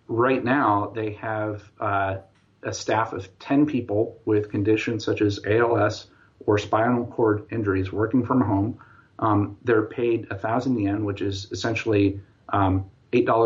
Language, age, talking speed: English, 40-59, 145 wpm